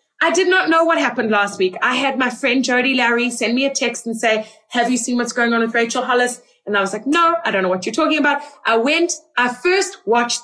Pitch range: 215-290 Hz